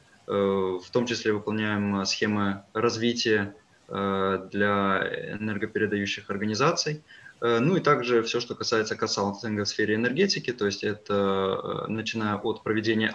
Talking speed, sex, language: 115 wpm, male, Ukrainian